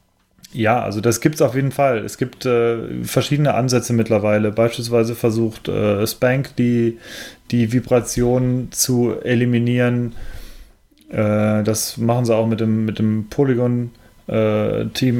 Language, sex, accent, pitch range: German, male, German, 105-120 Hz